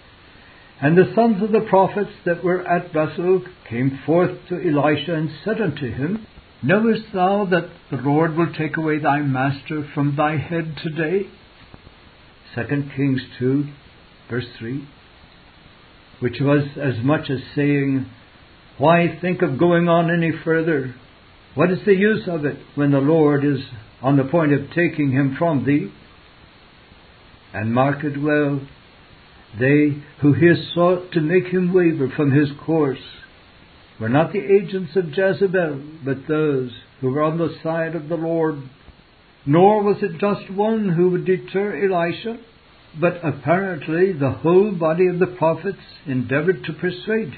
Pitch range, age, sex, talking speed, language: 140-180 Hz, 60-79, male, 150 wpm, English